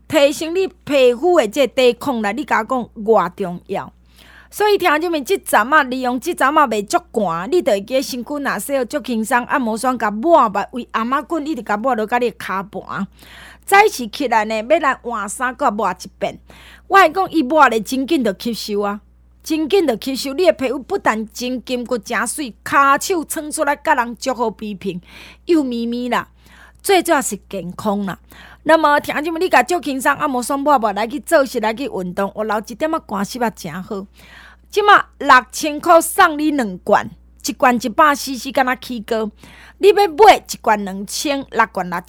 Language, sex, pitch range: Chinese, female, 220-315 Hz